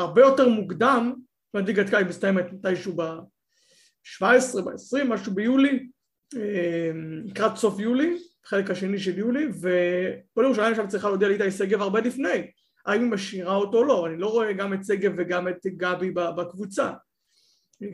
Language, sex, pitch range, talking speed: Hebrew, male, 180-230 Hz, 155 wpm